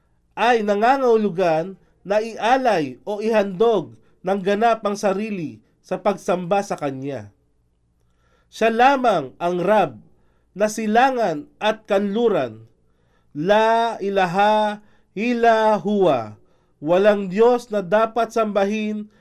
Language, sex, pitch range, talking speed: Filipino, male, 170-225 Hz, 90 wpm